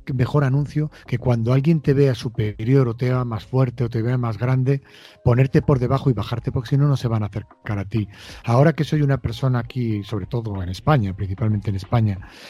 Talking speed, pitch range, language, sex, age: 220 wpm, 110-145 Hz, Spanish, male, 40-59